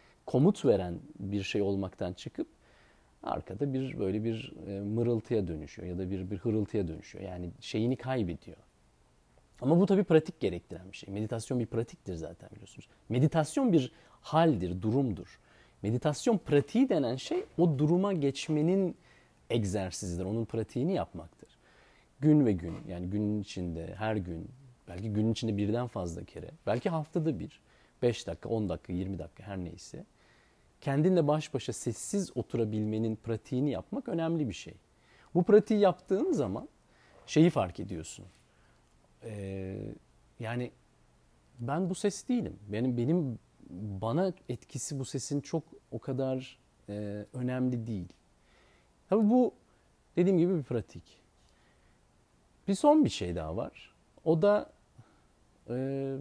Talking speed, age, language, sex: 130 wpm, 40-59, Turkish, male